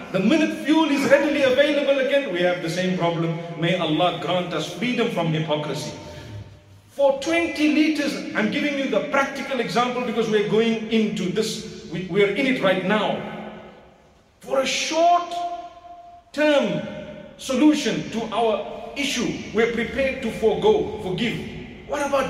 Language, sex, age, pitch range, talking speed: English, male, 40-59, 195-280 Hz, 145 wpm